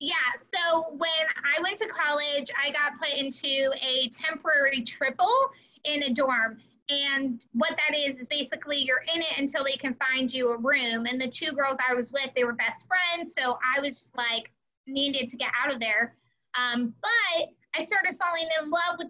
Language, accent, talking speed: English, American, 195 wpm